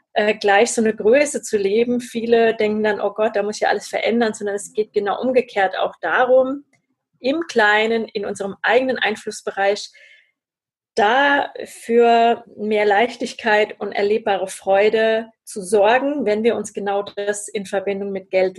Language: German